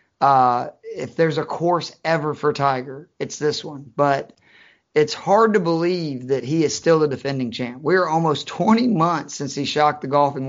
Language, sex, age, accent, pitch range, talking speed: English, male, 30-49, American, 135-160 Hz, 190 wpm